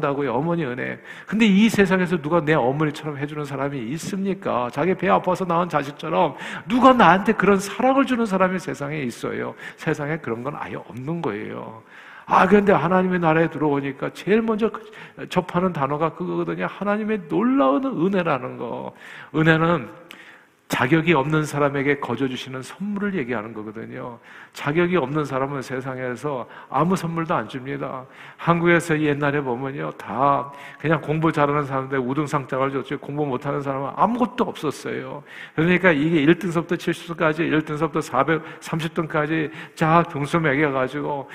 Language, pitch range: Korean, 140-180 Hz